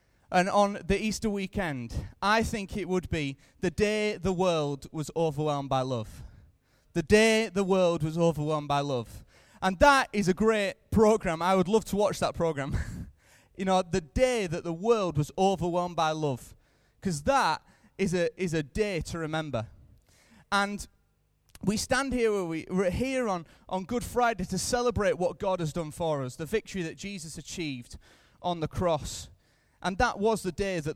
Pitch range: 155-205 Hz